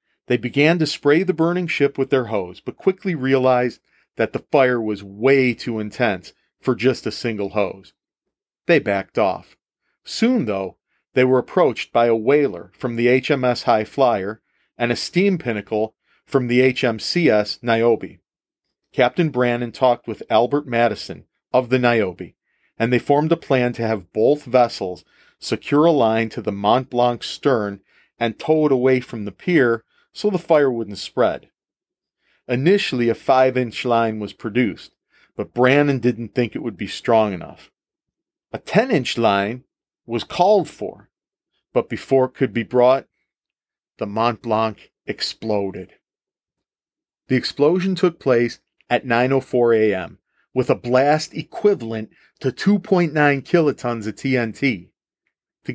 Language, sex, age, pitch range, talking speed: English, male, 40-59, 115-145 Hz, 145 wpm